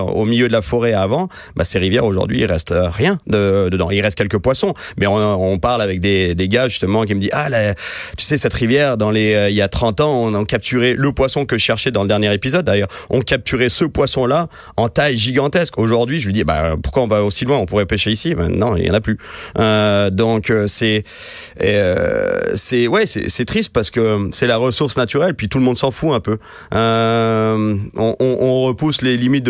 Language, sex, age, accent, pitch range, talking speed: French, male, 30-49, French, 105-125 Hz, 240 wpm